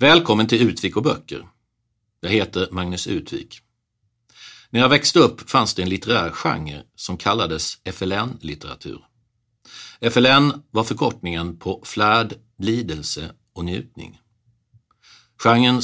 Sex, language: male, English